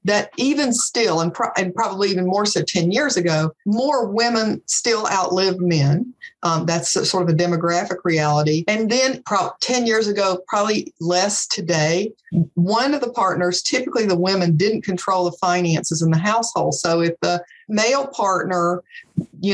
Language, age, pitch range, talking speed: English, 50-69, 170-210 Hz, 170 wpm